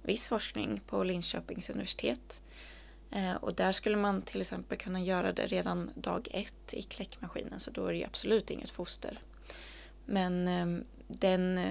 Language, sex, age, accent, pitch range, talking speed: Swedish, female, 20-39, native, 170-195 Hz, 145 wpm